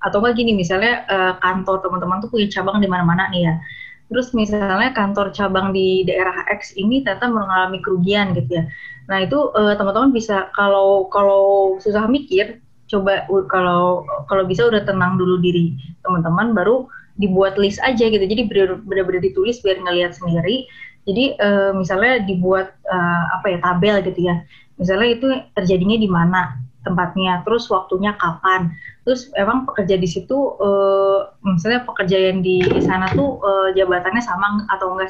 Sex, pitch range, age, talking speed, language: female, 185-215 Hz, 20-39, 155 wpm, Indonesian